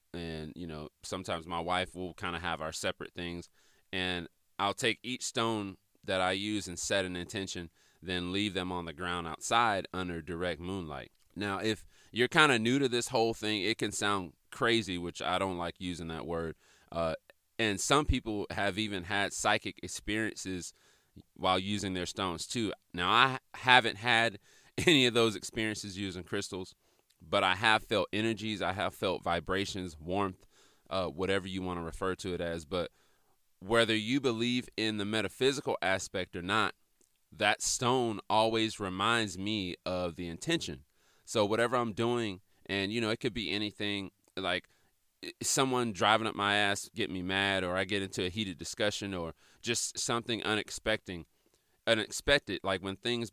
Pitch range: 90-110 Hz